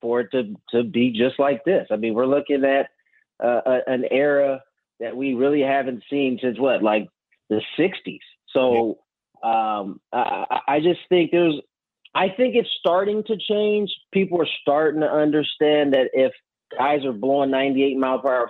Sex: male